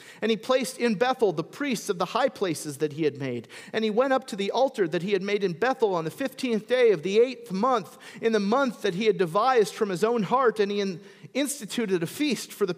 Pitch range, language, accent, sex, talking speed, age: 205-280 Hz, English, American, male, 255 wpm, 40-59